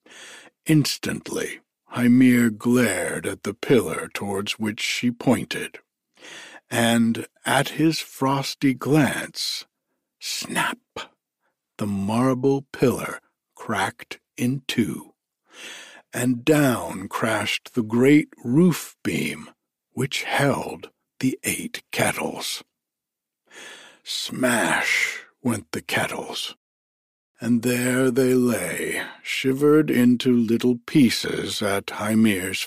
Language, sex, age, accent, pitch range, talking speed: English, male, 60-79, American, 115-135 Hz, 90 wpm